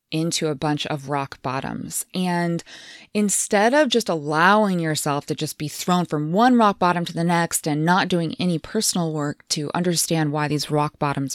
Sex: female